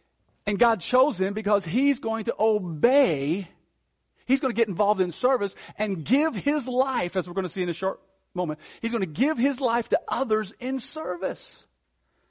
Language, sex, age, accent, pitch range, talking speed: English, male, 50-69, American, 155-225 Hz, 190 wpm